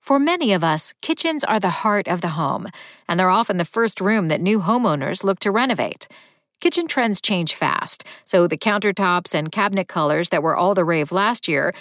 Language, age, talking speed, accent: English, 50-69, 205 wpm, American